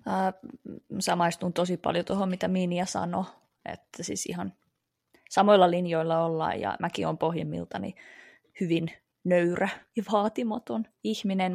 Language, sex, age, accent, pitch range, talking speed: Finnish, female, 20-39, native, 165-205 Hz, 120 wpm